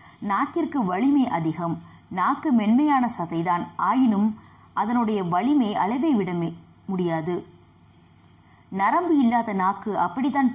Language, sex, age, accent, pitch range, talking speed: Tamil, female, 20-39, native, 170-245 Hz, 90 wpm